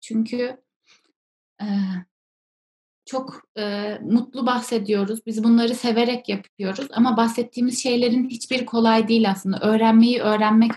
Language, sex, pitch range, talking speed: Turkish, female, 220-255 Hz, 105 wpm